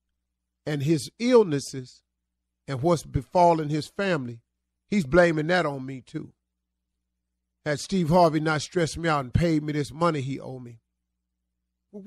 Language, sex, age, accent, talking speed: English, male, 40-59, American, 150 wpm